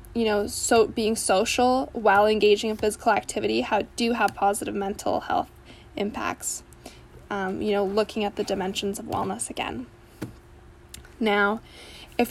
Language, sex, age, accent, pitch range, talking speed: English, female, 10-29, American, 200-245 Hz, 140 wpm